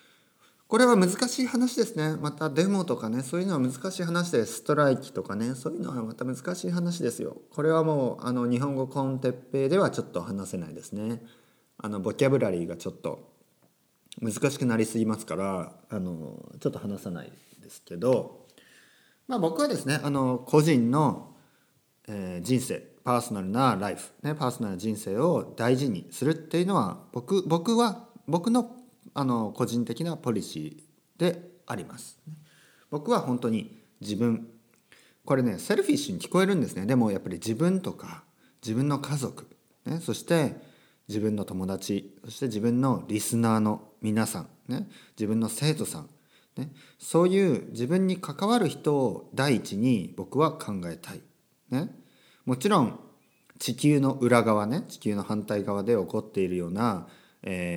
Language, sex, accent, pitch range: Japanese, male, native, 110-165 Hz